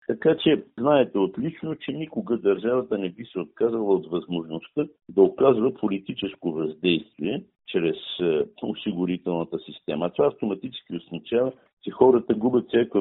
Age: 60-79